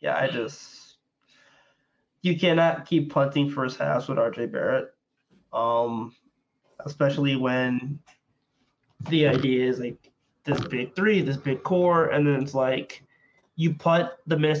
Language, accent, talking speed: English, American, 135 wpm